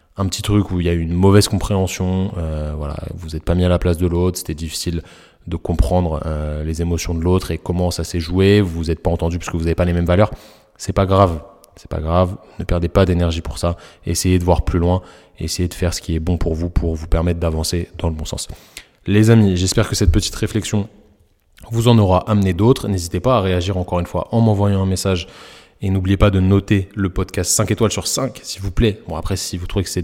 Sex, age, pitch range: male, 20-39, 85-100 Hz